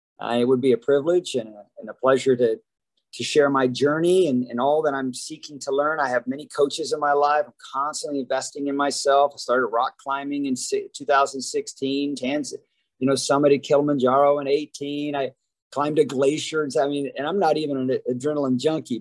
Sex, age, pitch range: male, 50-69, 130-165 Hz